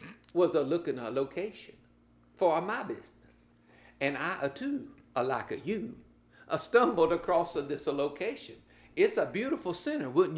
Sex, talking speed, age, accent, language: male, 125 wpm, 60-79, American, English